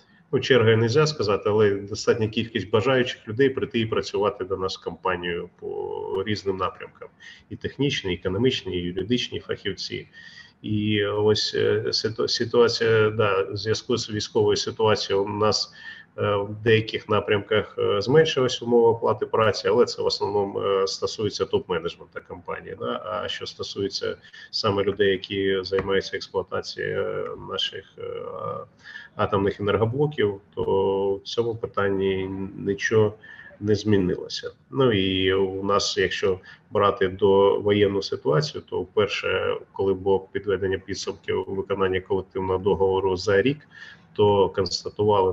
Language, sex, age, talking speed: Ukrainian, male, 30-49, 120 wpm